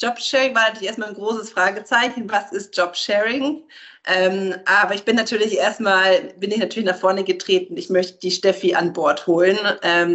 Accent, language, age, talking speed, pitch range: German, German, 30-49, 190 wpm, 175-220 Hz